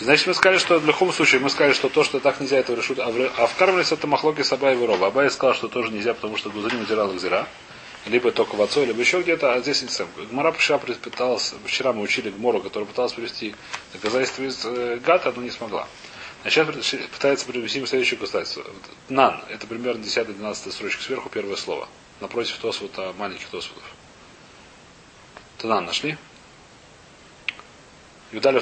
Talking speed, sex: 165 wpm, male